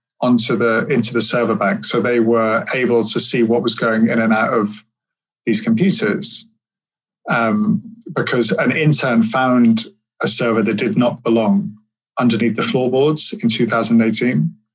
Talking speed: 150 wpm